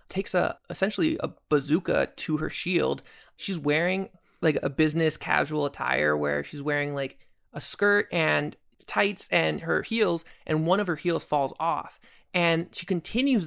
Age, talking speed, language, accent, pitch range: 20-39, 160 wpm, English, American, 145-180 Hz